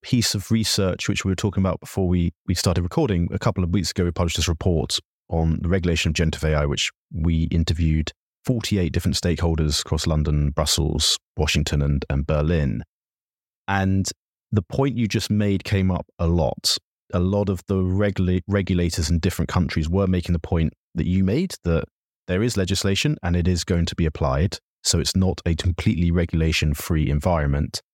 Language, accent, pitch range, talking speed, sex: English, British, 80-95 Hz, 185 wpm, male